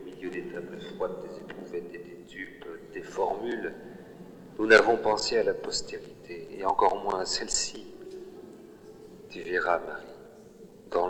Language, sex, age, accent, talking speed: French, male, 40-59, French, 140 wpm